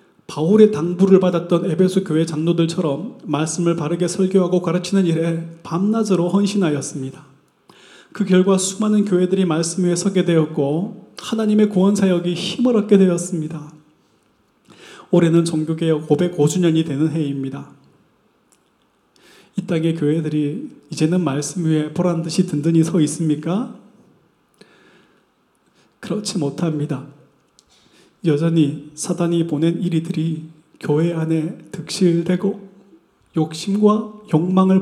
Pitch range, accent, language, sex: 155-185 Hz, native, Korean, male